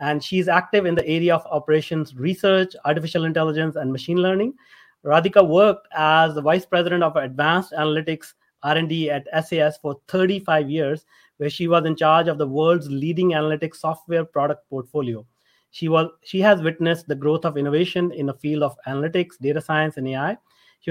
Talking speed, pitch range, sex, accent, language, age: 170 wpm, 150-180 Hz, male, Indian, English, 30-49